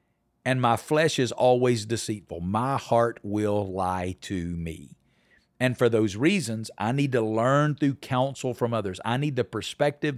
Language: English